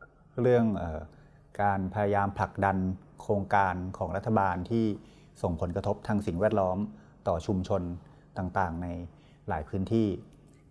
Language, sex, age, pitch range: Thai, male, 30-49, 95-115 Hz